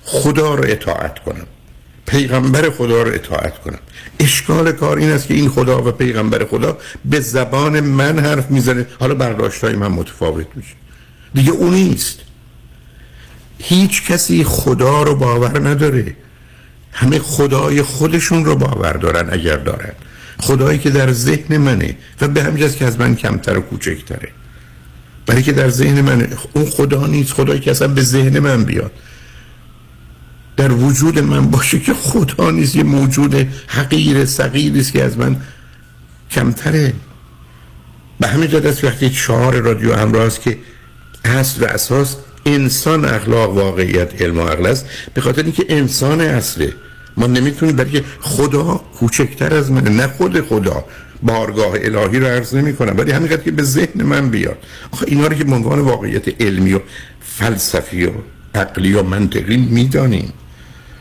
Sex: male